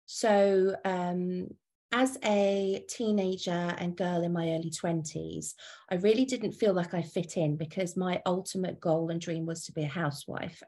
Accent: British